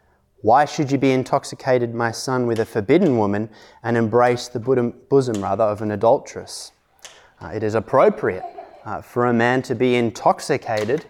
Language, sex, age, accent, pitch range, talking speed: English, male, 20-39, Australian, 110-135 Hz, 160 wpm